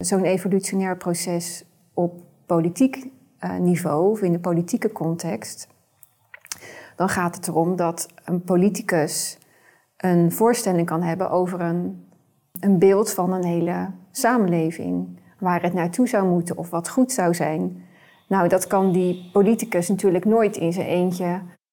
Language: Dutch